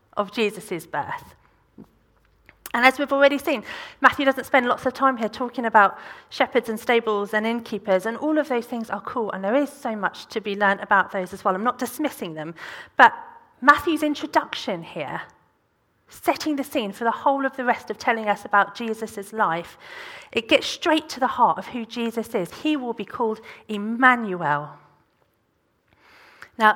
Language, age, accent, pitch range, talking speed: English, 40-59, British, 200-265 Hz, 180 wpm